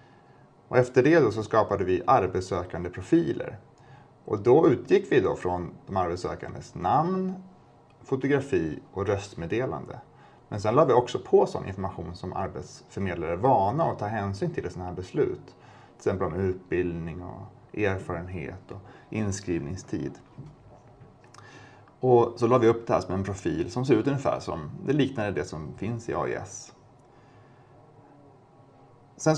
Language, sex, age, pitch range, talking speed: Swedish, male, 30-49, 100-135 Hz, 145 wpm